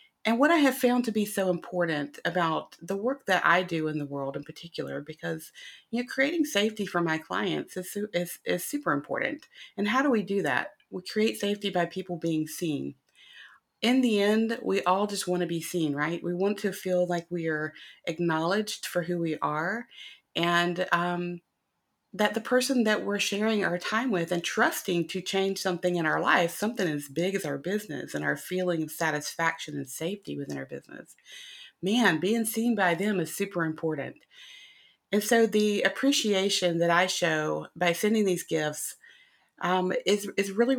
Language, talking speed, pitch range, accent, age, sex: English, 185 wpm, 165-210 Hz, American, 30-49, female